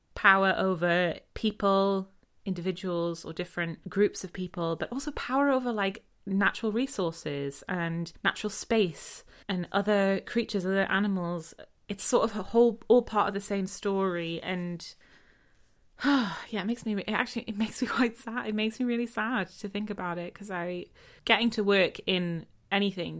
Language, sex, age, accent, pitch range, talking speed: English, female, 20-39, British, 175-225 Hz, 165 wpm